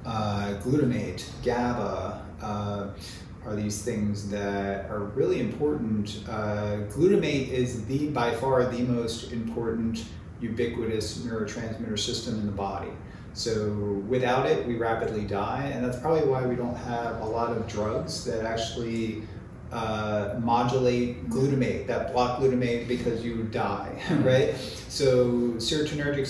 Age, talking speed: 30-49, 130 wpm